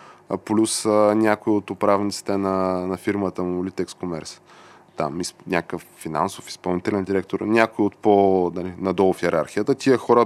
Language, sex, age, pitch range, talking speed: Bulgarian, male, 20-39, 100-115 Hz, 145 wpm